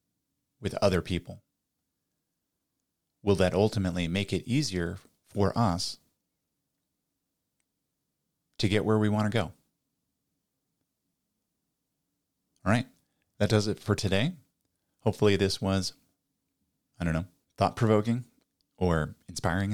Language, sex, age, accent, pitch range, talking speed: English, male, 30-49, American, 90-110 Hz, 105 wpm